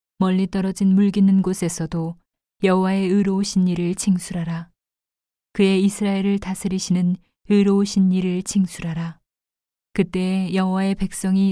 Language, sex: Korean, female